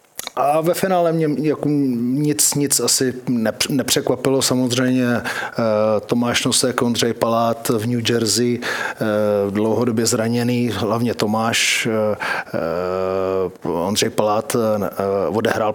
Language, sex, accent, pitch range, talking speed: Czech, male, native, 105-120 Hz, 90 wpm